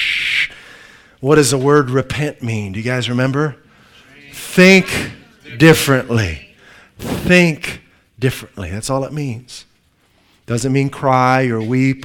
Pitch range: 120-155 Hz